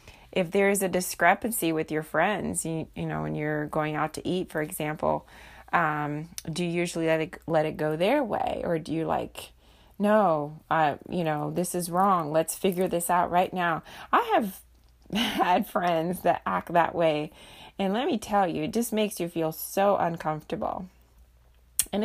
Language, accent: English, American